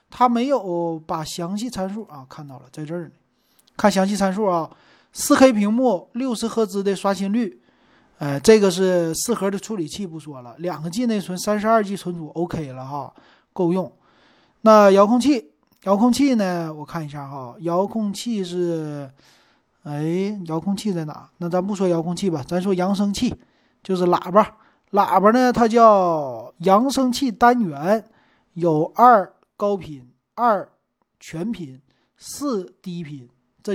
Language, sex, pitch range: Chinese, male, 160-215 Hz